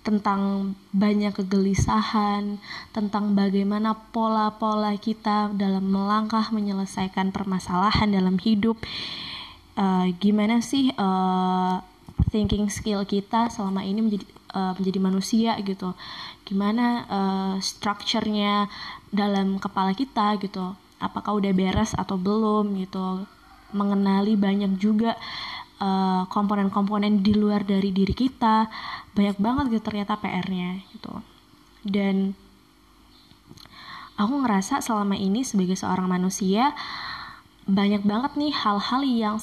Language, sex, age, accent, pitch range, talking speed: Indonesian, female, 20-39, native, 195-220 Hz, 105 wpm